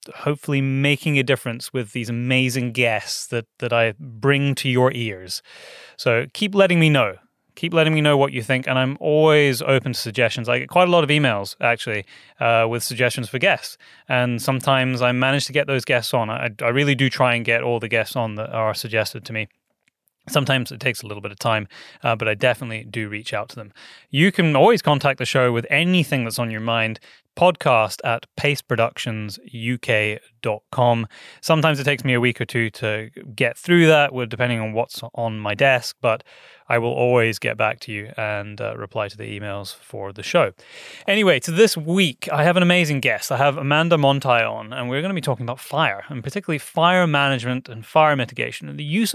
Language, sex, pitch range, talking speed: English, male, 115-145 Hz, 210 wpm